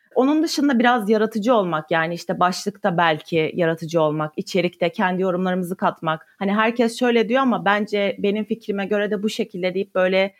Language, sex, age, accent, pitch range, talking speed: Turkish, female, 30-49, native, 175-225 Hz, 165 wpm